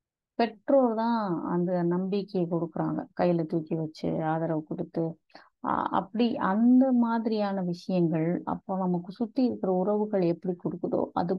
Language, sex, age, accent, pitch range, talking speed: Tamil, female, 30-49, native, 165-205 Hz, 115 wpm